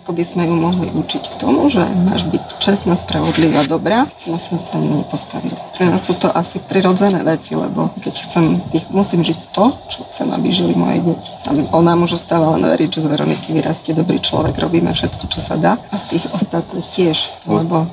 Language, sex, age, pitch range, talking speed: Slovak, female, 30-49, 165-180 Hz, 200 wpm